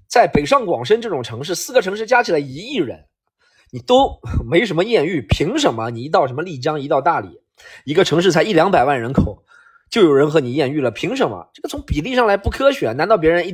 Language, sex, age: Chinese, male, 20-39